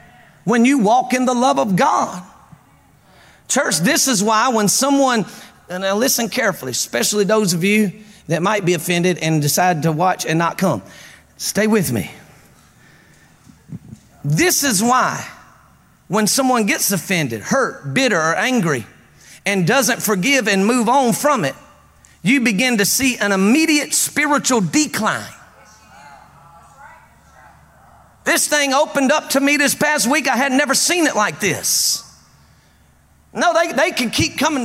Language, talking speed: English, 145 wpm